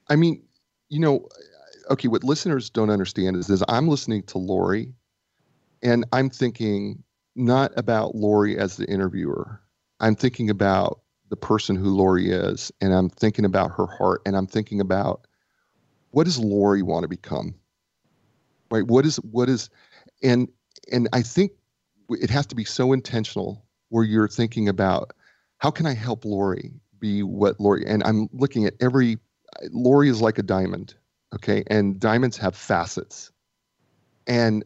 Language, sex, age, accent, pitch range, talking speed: English, male, 40-59, American, 100-120 Hz, 160 wpm